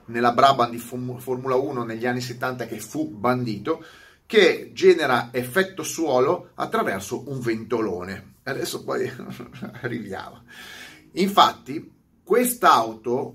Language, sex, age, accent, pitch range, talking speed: Italian, male, 30-49, native, 115-150 Hz, 105 wpm